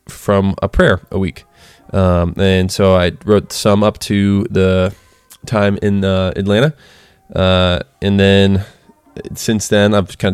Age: 20-39